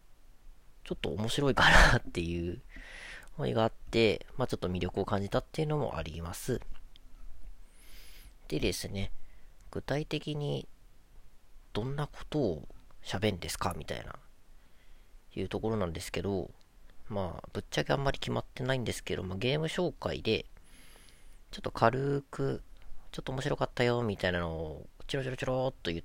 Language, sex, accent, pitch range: Japanese, female, native, 90-120 Hz